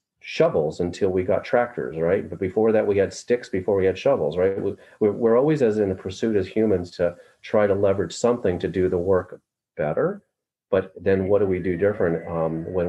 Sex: male